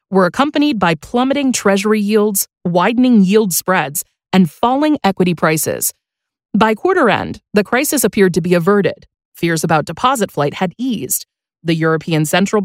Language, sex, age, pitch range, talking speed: English, female, 30-49, 175-245 Hz, 145 wpm